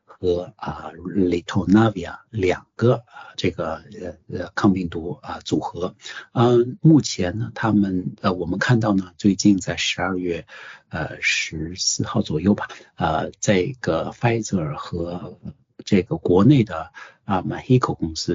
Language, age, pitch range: English, 60-79, 90-110 Hz